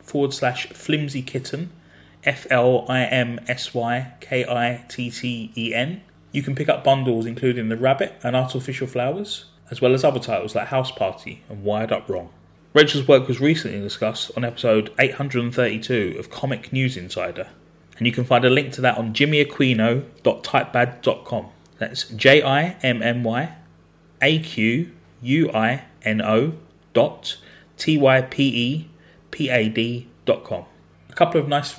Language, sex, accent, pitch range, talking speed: English, male, British, 115-140 Hz, 115 wpm